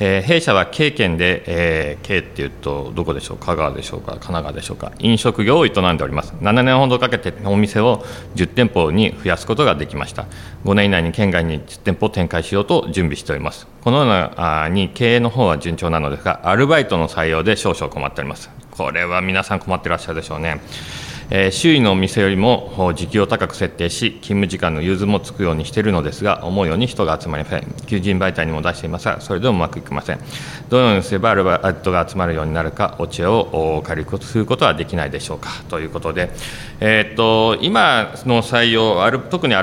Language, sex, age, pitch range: Japanese, male, 40-59, 85-115 Hz